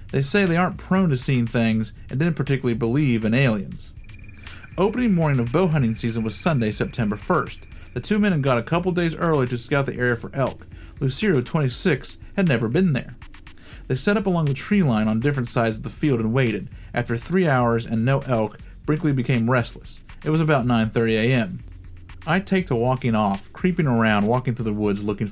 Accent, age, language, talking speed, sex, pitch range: American, 40-59, English, 205 wpm, male, 110-150 Hz